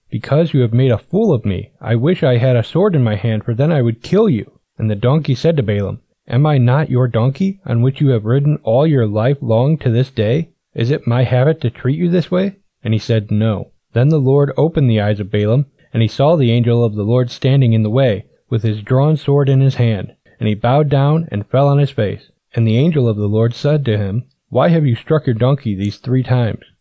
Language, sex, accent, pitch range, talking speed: English, male, American, 115-140 Hz, 255 wpm